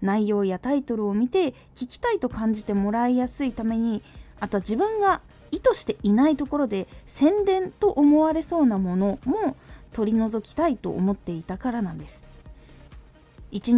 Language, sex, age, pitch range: Japanese, female, 20-39, 195-285 Hz